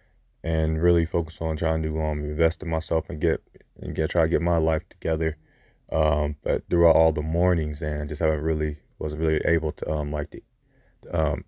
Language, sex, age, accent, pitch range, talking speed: English, male, 30-49, American, 75-85 Hz, 200 wpm